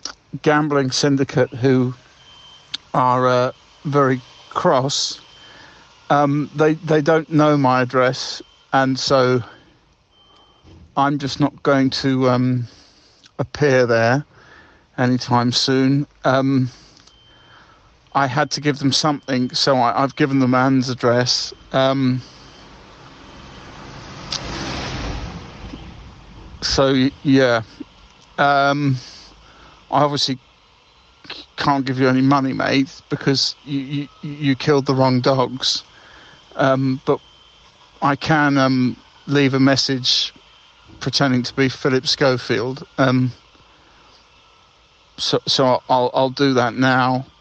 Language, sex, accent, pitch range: English, male, British, 125-140 Hz